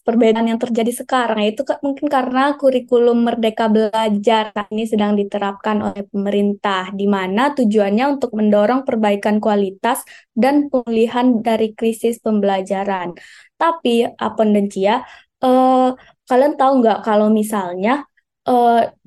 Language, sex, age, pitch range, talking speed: Indonesian, female, 20-39, 215-250 Hz, 115 wpm